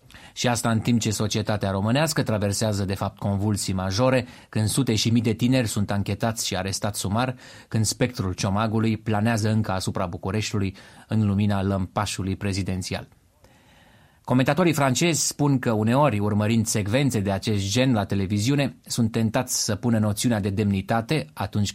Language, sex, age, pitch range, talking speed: Romanian, male, 30-49, 100-120 Hz, 150 wpm